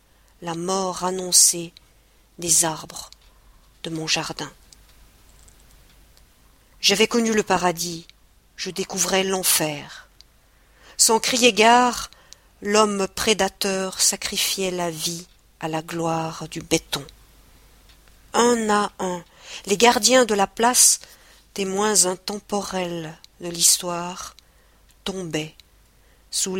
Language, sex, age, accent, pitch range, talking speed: French, female, 50-69, French, 165-200 Hz, 95 wpm